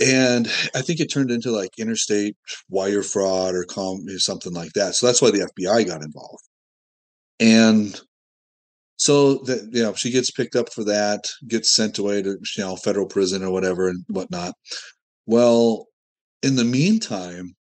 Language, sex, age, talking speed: English, male, 30-49, 160 wpm